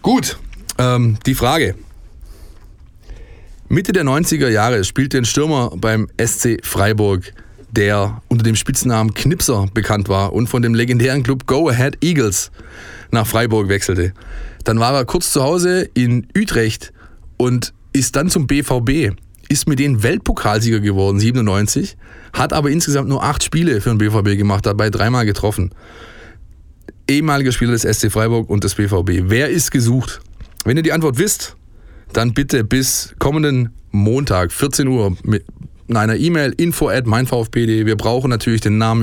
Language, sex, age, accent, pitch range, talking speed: German, male, 20-39, German, 105-130 Hz, 150 wpm